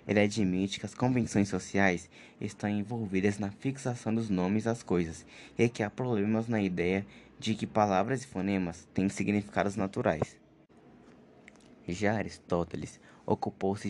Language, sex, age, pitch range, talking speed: Portuguese, male, 20-39, 95-110 Hz, 135 wpm